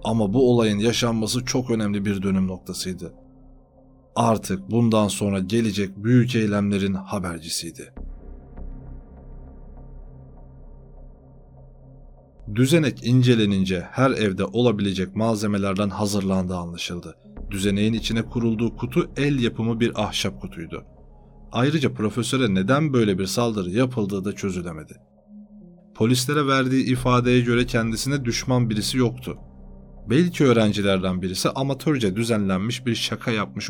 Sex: male